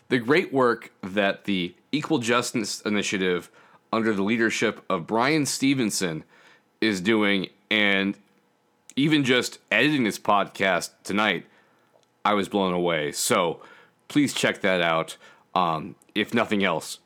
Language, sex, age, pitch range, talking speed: English, male, 30-49, 95-120 Hz, 125 wpm